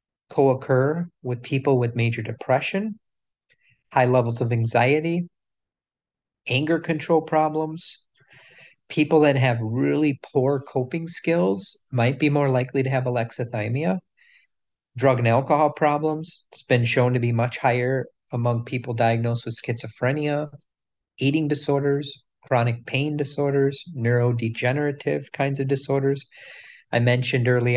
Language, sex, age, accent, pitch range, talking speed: English, male, 50-69, American, 120-150 Hz, 120 wpm